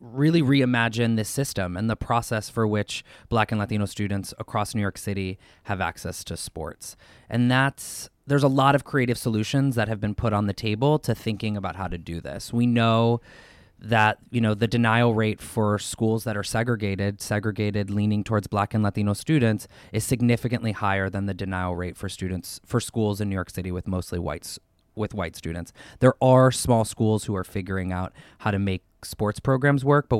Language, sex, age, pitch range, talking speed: English, male, 20-39, 105-125 Hz, 195 wpm